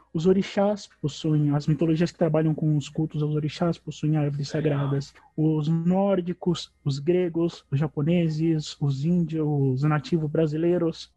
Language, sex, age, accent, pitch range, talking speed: Portuguese, male, 20-39, Brazilian, 145-175 Hz, 140 wpm